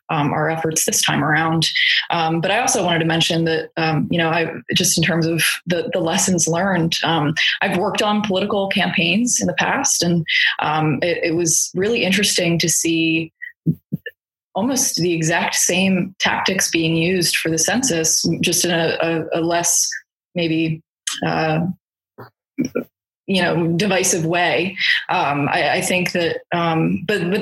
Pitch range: 160-185 Hz